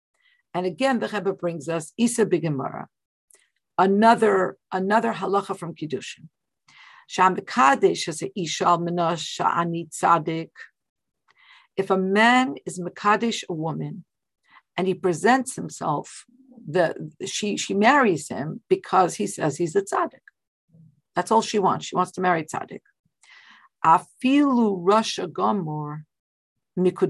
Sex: female